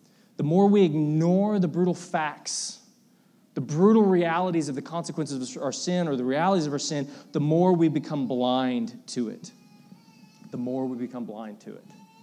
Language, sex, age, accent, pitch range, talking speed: English, male, 20-39, American, 140-205 Hz, 175 wpm